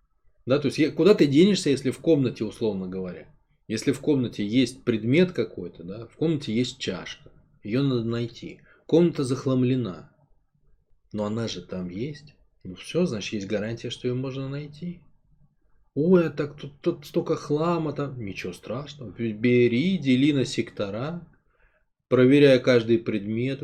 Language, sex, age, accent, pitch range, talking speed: Russian, male, 20-39, native, 110-150 Hz, 145 wpm